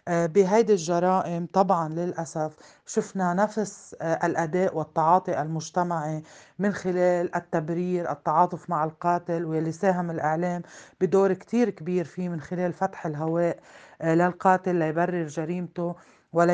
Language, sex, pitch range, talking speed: Arabic, female, 165-185 Hz, 110 wpm